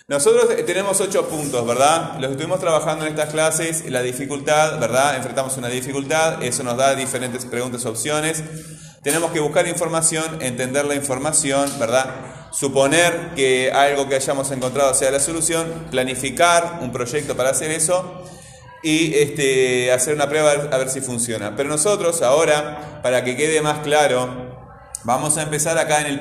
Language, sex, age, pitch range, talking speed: Spanish, male, 30-49, 130-160 Hz, 160 wpm